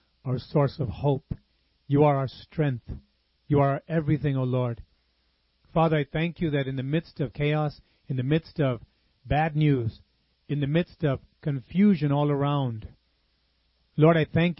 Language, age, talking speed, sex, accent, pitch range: English, 40-59, 160 wpm, male, American, 120-160 Hz